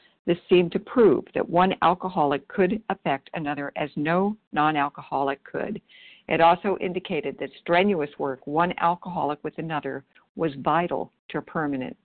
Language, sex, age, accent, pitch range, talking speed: English, female, 60-79, American, 155-195 Hz, 140 wpm